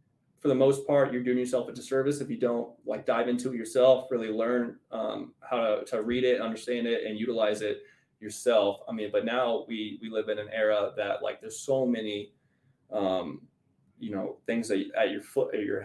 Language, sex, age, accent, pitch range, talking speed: English, male, 20-39, American, 105-130 Hz, 210 wpm